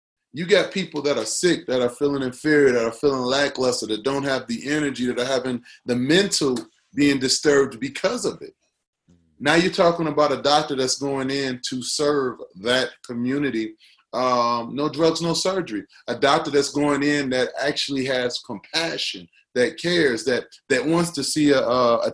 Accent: American